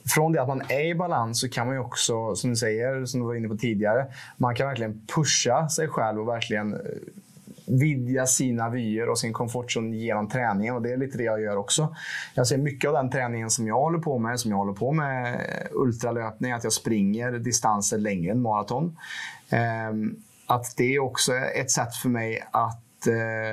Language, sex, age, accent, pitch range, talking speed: Swedish, male, 20-39, Norwegian, 115-135 Hz, 200 wpm